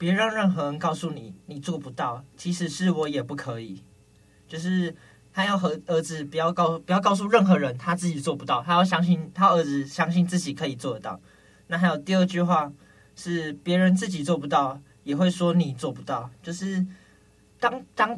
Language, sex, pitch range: Chinese, male, 145-185 Hz